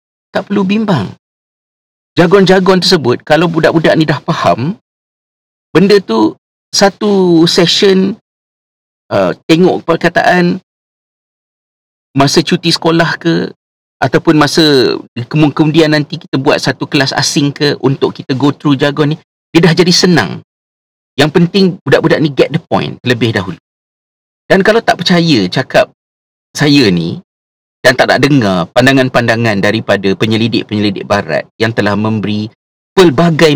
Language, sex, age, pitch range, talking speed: Malay, male, 50-69, 110-170 Hz, 125 wpm